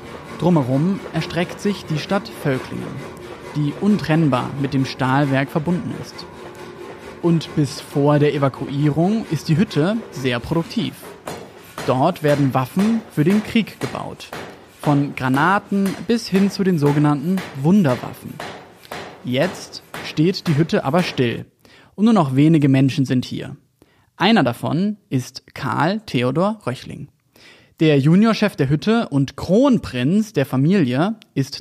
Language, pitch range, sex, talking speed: German, 135-185 Hz, male, 125 wpm